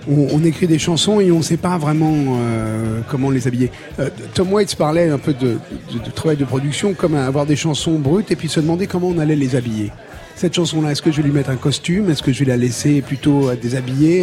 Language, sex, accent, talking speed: French, male, French, 250 wpm